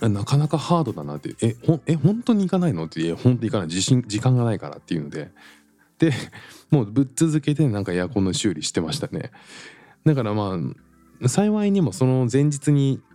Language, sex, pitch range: Japanese, male, 90-145 Hz